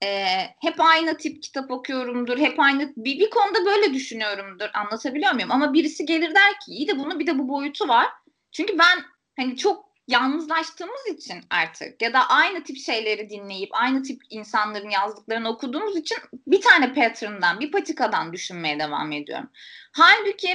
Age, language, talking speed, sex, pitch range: 20-39, Turkish, 165 wpm, female, 245-335 Hz